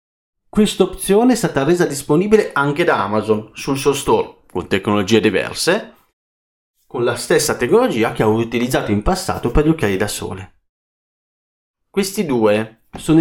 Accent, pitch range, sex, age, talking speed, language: native, 105-170 Hz, male, 40-59, 140 wpm, Italian